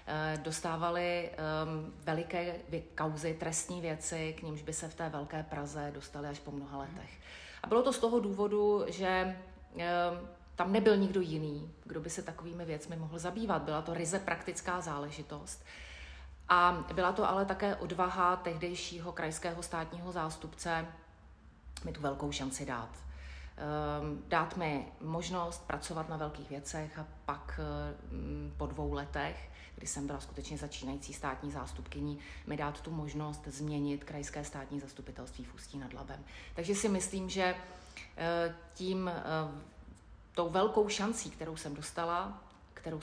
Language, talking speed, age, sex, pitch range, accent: Czech, 140 wpm, 30-49, female, 145-170 Hz, native